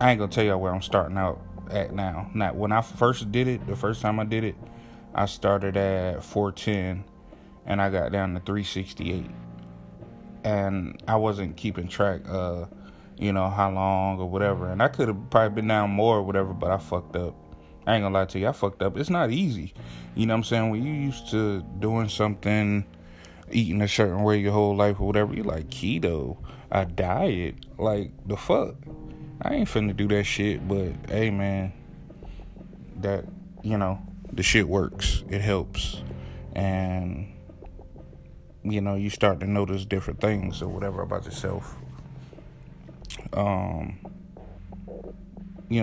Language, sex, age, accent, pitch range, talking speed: English, male, 20-39, American, 95-110 Hz, 175 wpm